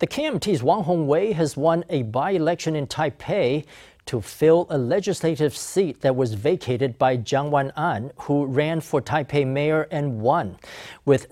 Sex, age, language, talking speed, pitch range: male, 40-59, English, 155 wpm, 140-165 Hz